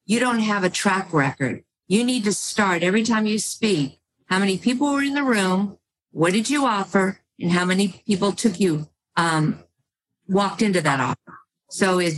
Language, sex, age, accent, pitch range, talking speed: English, female, 50-69, American, 175-215 Hz, 180 wpm